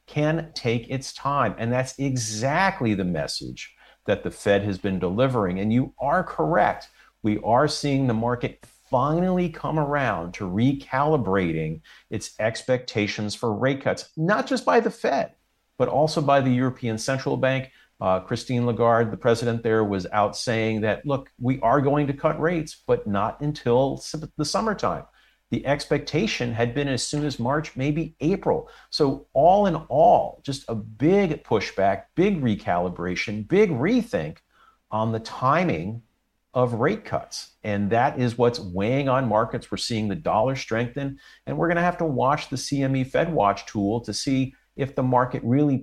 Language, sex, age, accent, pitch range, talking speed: English, male, 50-69, American, 110-145 Hz, 160 wpm